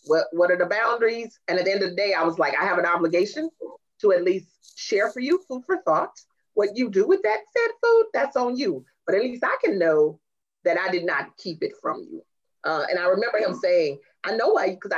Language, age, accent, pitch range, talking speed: English, 30-49, American, 165-255 Hz, 250 wpm